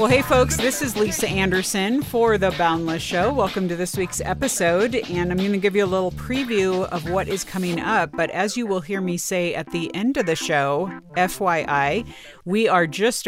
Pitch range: 155-200 Hz